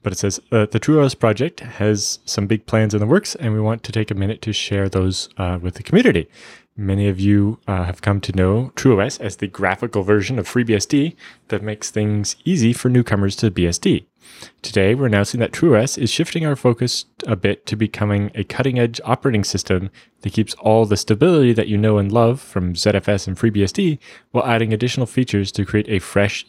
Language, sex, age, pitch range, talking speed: English, male, 20-39, 100-120 Hz, 205 wpm